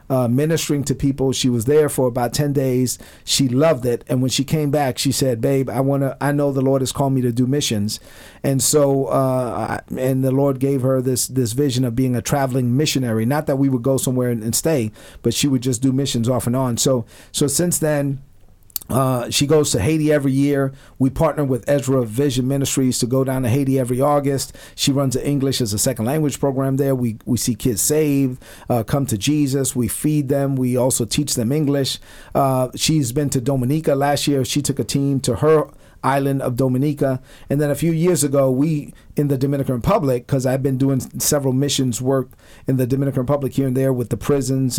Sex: male